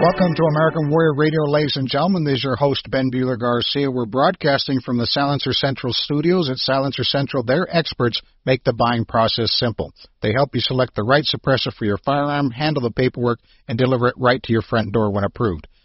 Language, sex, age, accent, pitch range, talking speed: English, male, 50-69, American, 110-140 Hz, 210 wpm